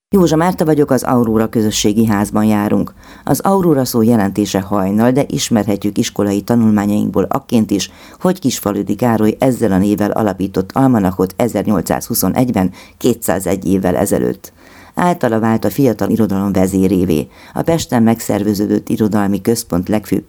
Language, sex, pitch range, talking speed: Hungarian, female, 95-120 Hz, 125 wpm